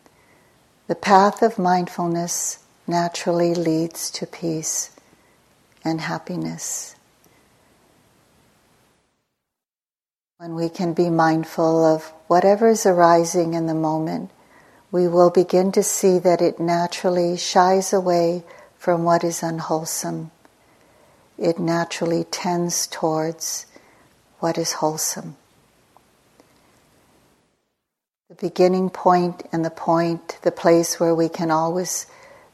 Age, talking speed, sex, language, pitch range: 60-79, 100 wpm, female, English, 160-175 Hz